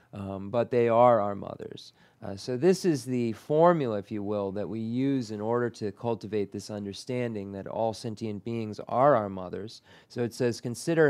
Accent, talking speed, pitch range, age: American, 190 wpm, 105-125 Hz, 30-49